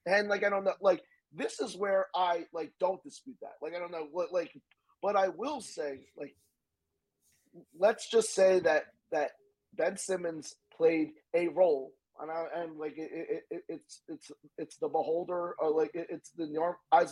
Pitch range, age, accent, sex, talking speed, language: 155-195 Hz, 30-49, American, male, 185 wpm, English